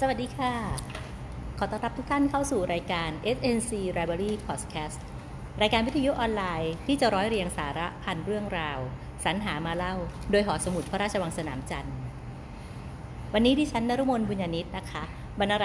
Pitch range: 145-200 Hz